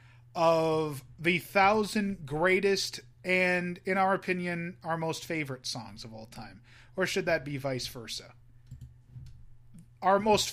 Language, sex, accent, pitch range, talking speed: English, male, American, 125-185 Hz, 130 wpm